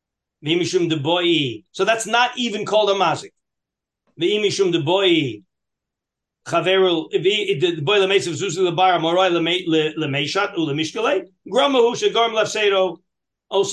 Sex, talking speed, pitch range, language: male, 60 wpm, 170-215 Hz, English